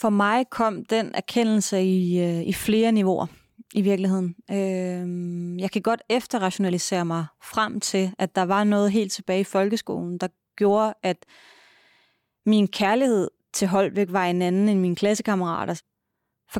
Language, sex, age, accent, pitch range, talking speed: Danish, female, 20-39, native, 185-220 Hz, 145 wpm